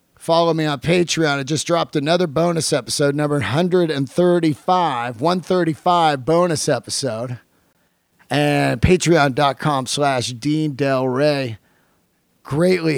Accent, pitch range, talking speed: American, 135-165 Hz, 100 wpm